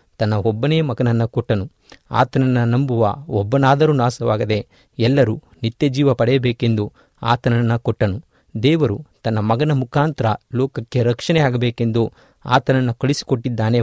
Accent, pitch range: native, 115-140 Hz